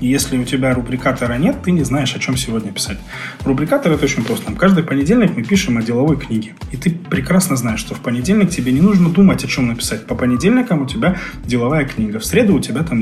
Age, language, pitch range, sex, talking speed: 20-39, Russian, 115-150 Hz, male, 235 wpm